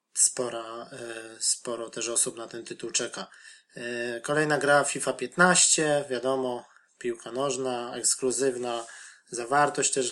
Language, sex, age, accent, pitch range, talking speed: Polish, male, 20-39, native, 115-130 Hz, 100 wpm